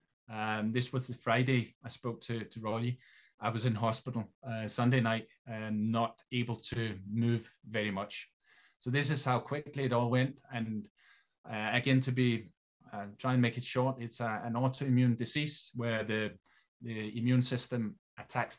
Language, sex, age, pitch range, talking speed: English, male, 20-39, 105-125 Hz, 175 wpm